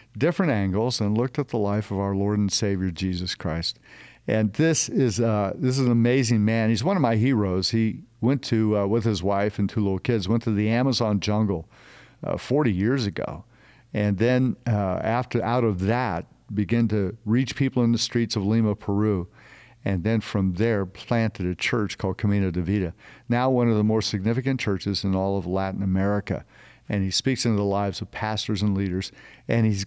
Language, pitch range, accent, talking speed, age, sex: English, 100-120 Hz, American, 200 wpm, 50-69, male